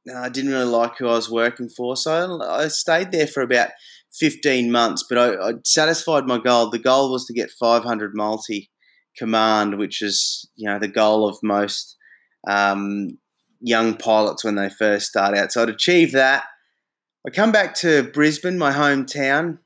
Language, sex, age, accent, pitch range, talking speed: English, male, 20-39, Australian, 110-135 Hz, 175 wpm